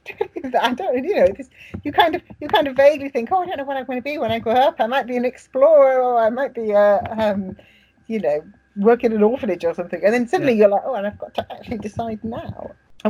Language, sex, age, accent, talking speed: English, female, 40-59, British, 270 wpm